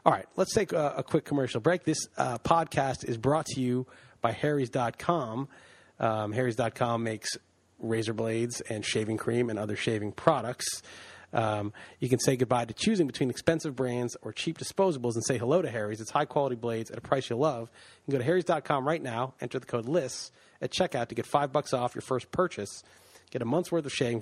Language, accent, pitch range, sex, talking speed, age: English, American, 115-150 Hz, male, 200 wpm, 30-49